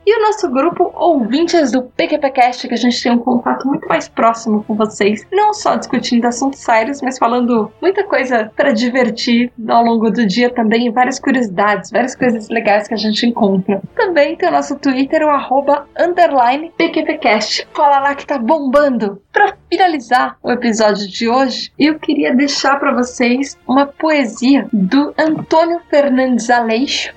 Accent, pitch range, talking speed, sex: Brazilian, 225-285 Hz, 160 wpm, female